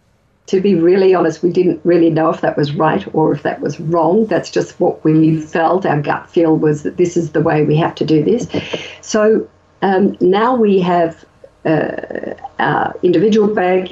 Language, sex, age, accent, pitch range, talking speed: English, female, 50-69, Australian, 165-200 Hz, 190 wpm